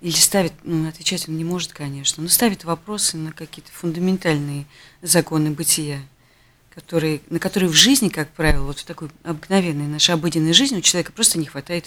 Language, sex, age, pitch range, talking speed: Russian, female, 40-59, 145-175 Hz, 175 wpm